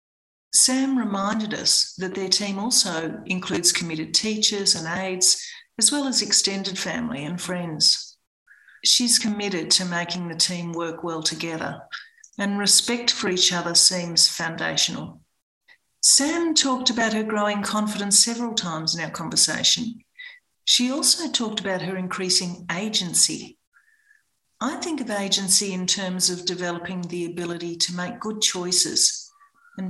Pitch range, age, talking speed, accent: 175-230 Hz, 50-69, 135 wpm, Australian